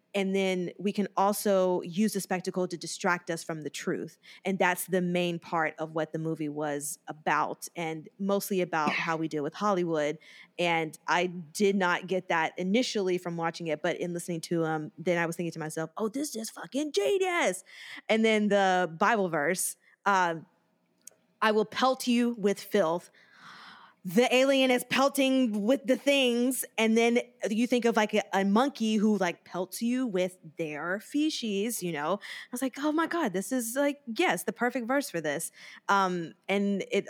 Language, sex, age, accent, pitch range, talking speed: English, female, 20-39, American, 175-225 Hz, 185 wpm